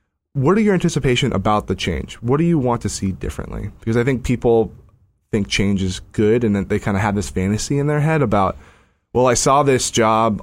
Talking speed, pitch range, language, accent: 225 wpm, 100-130 Hz, English, American